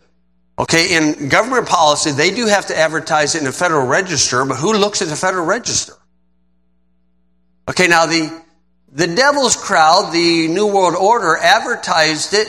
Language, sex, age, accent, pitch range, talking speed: English, male, 50-69, American, 125-195 Hz, 160 wpm